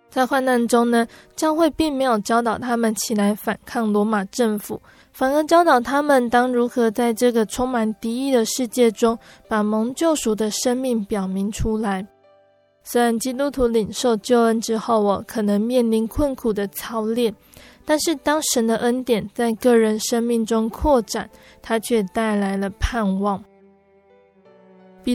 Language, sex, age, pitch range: Chinese, female, 20-39, 215-250 Hz